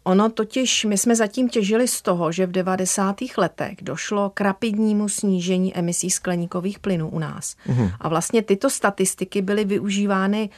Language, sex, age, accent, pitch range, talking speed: Czech, female, 40-59, native, 180-205 Hz, 155 wpm